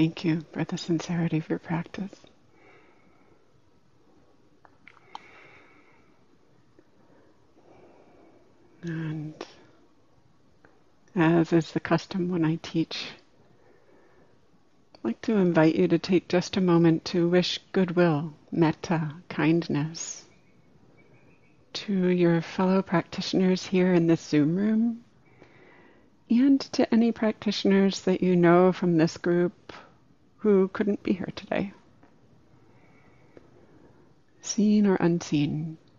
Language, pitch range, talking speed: English, 160-185 Hz, 95 wpm